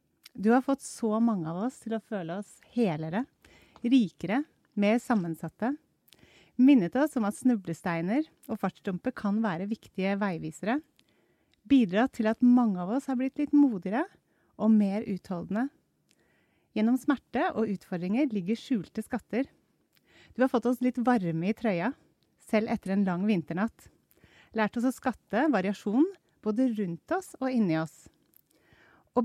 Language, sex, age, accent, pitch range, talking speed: English, female, 30-49, Swedish, 200-260 Hz, 145 wpm